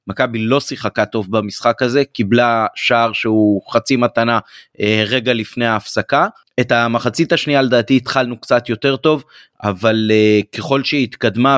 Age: 30-49